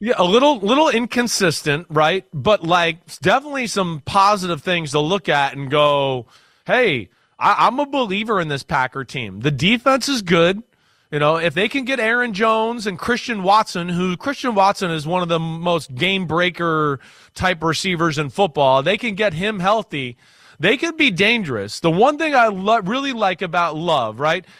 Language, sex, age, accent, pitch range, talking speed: English, male, 30-49, American, 160-215 Hz, 175 wpm